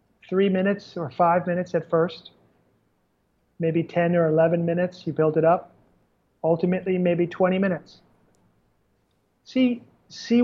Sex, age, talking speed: male, 40-59, 125 wpm